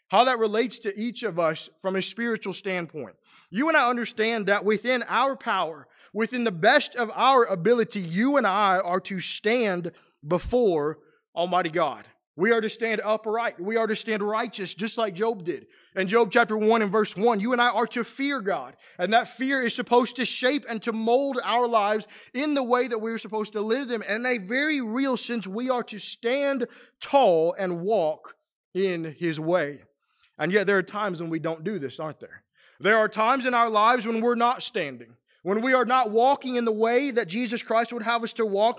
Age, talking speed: 20-39, 215 wpm